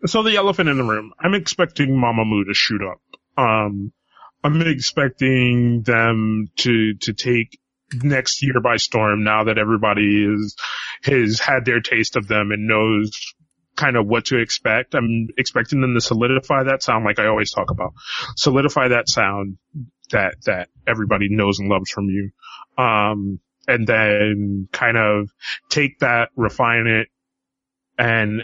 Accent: American